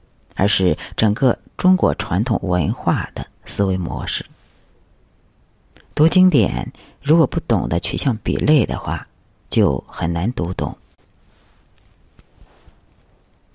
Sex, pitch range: female, 90-120 Hz